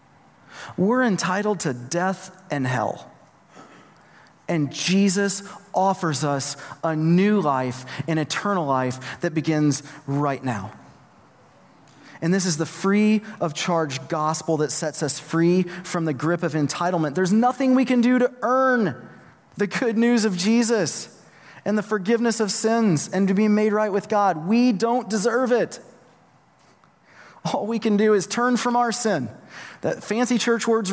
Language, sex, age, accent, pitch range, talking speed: English, male, 30-49, American, 150-200 Hz, 150 wpm